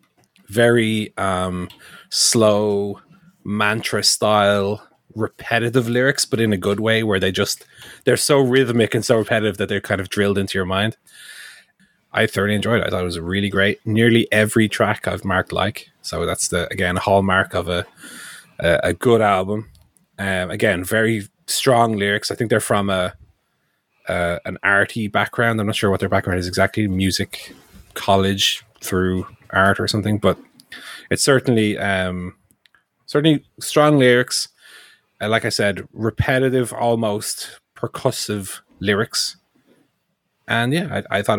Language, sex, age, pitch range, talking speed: English, male, 30-49, 95-115 Hz, 150 wpm